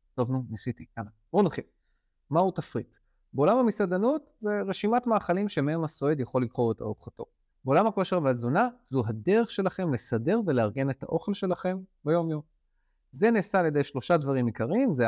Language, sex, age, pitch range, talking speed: Hebrew, male, 30-49, 115-185 Hz, 160 wpm